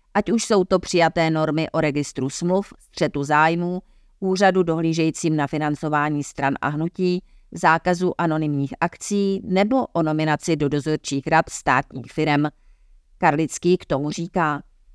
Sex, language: female, Czech